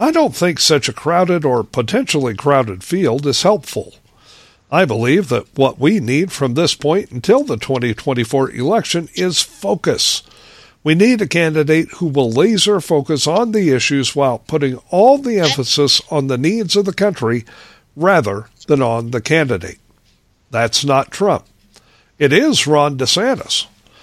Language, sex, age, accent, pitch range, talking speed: English, male, 60-79, American, 130-175 Hz, 150 wpm